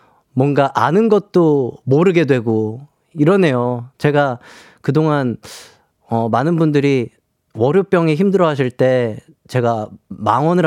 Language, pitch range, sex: Korean, 120-170 Hz, male